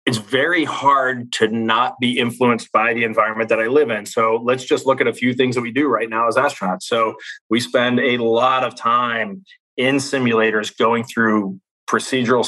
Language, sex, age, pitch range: English, male, 30-49, 110-130 Hz